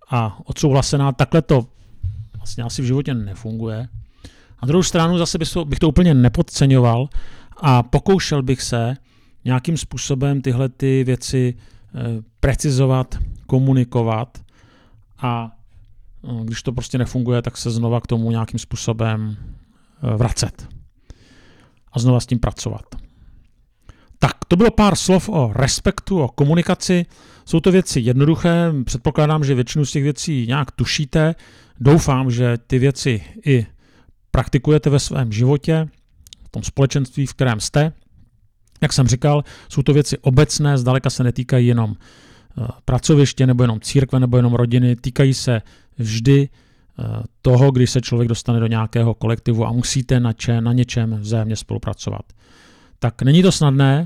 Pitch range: 115-145 Hz